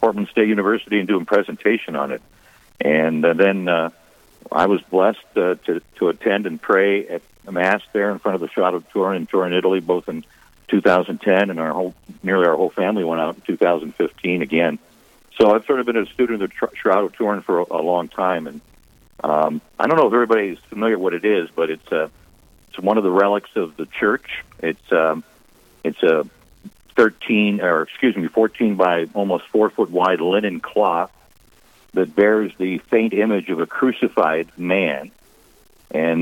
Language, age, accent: English, 60-79, American